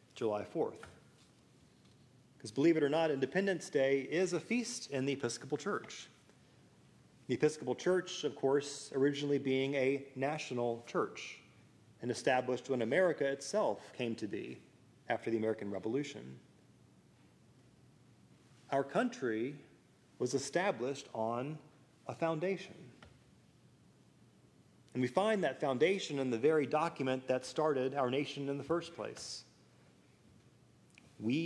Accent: American